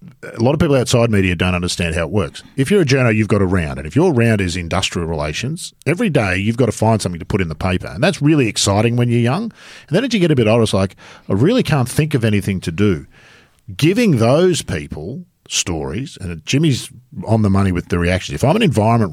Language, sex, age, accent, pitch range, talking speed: English, male, 50-69, Australian, 90-125 Hz, 250 wpm